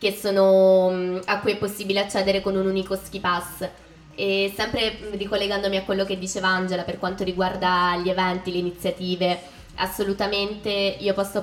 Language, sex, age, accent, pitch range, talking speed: Italian, female, 20-39, native, 185-195 Hz, 160 wpm